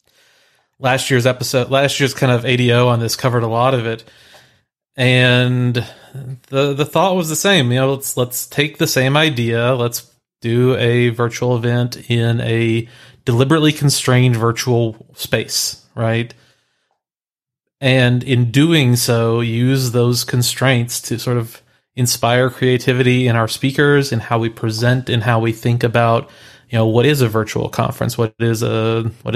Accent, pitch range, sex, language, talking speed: American, 115-135 Hz, male, English, 155 wpm